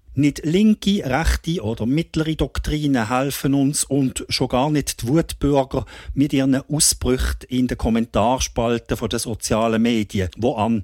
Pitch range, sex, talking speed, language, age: 105-145 Hz, male, 140 wpm, English, 50-69